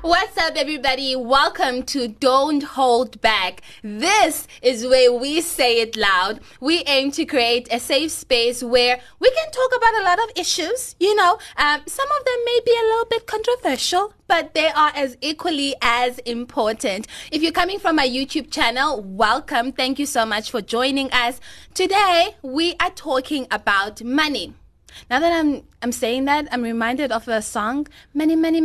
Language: English